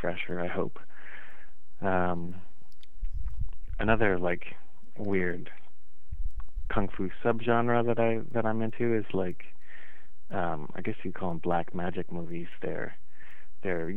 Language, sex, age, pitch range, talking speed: English, male, 30-49, 90-100 Hz, 130 wpm